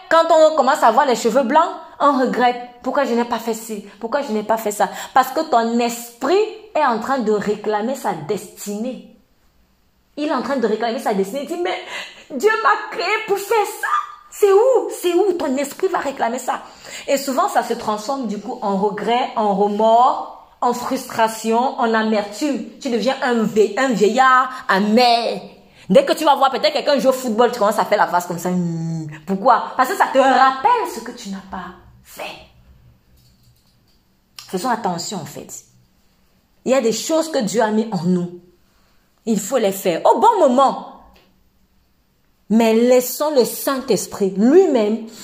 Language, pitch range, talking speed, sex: French, 205-275 Hz, 180 wpm, female